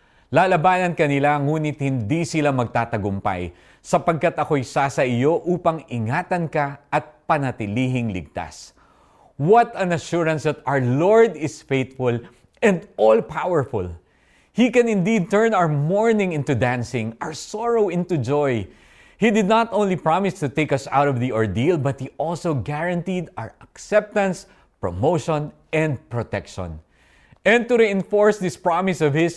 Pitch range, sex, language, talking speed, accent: 120-175 Hz, male, Filipino, 135 wpm, native